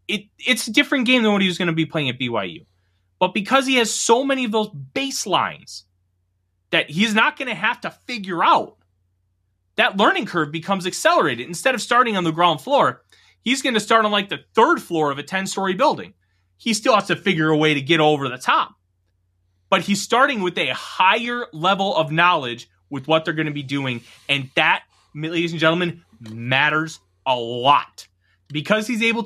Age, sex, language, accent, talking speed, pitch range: 30-49, male, English, American, 200 wpm, 130-195 Hz